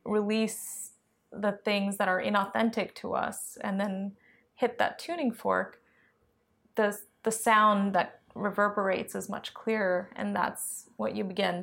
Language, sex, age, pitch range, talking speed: Finnish, female, 20-39, 195-220 Hz, 140 wpm